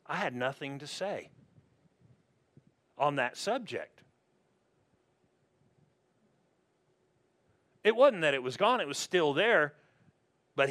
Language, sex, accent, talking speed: English, male, American, 105 wpm